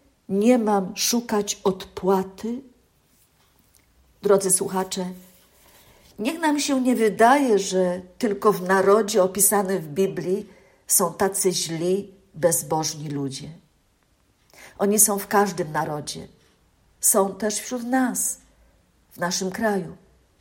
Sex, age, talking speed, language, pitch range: female, 50-69, 105 wpm, Polish, 180-215 Hz